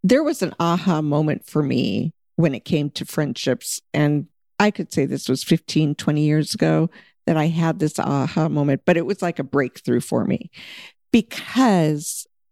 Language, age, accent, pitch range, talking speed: English, 50-69, American, 160-205 Hz, 175 wpm